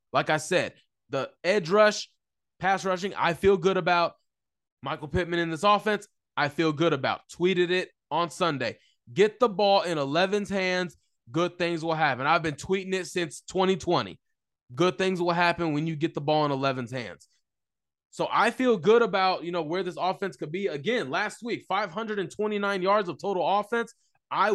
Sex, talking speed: male, 180 wpm